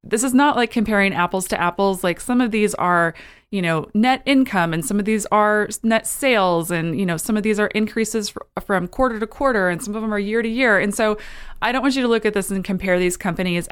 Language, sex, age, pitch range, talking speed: English, female, 20-39, 180-235 Hz, 255 wpm